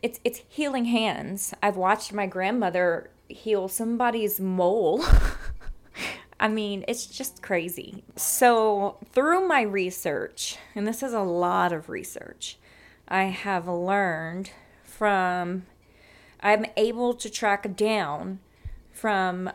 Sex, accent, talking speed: female, American, 115 wpm